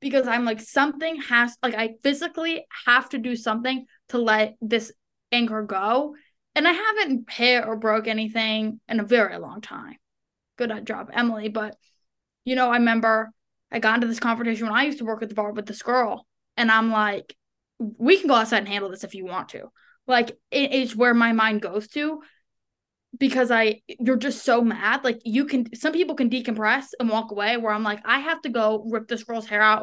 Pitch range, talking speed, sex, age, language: 220-265 Hz, 205 wpm, female, 10-29, English